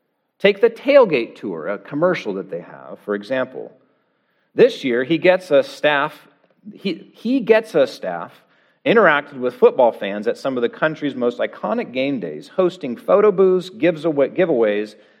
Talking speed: 140 wpm